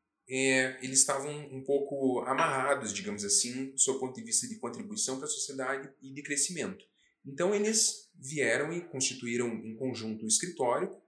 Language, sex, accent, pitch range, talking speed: Portuguese, male, Brazilian, 115-170 Hz, 155 wpm